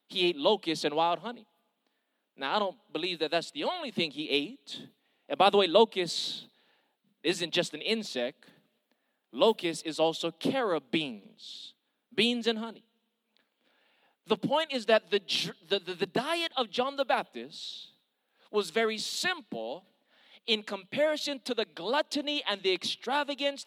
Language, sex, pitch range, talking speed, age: English, male, 165-245 Hz, 145 wpm, 30-49